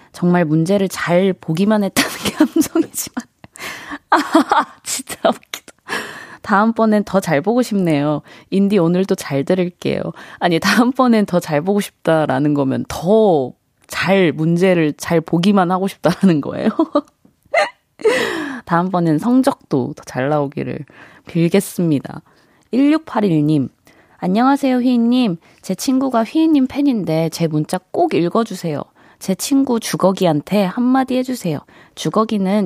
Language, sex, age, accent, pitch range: Korean, female, 20-39, native, 160-240 Hz